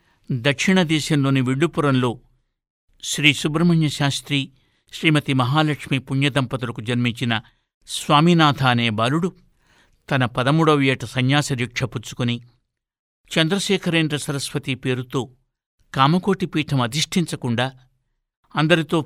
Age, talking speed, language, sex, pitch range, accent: 60-79, 70 wpm, Telugu, male, 125-155 Hz, native